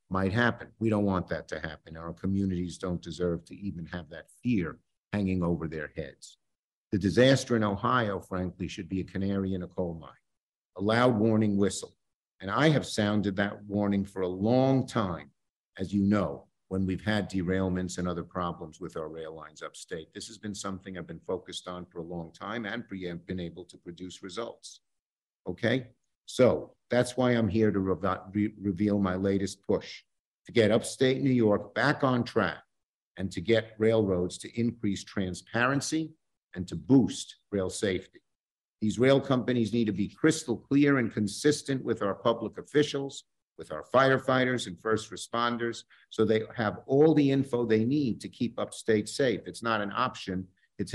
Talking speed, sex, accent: 175 wpm, male, American